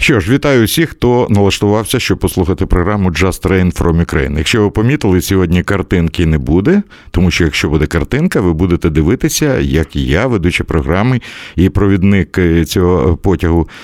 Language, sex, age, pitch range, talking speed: Russian, male, 60-79, 80-110 Hz, 155 wpm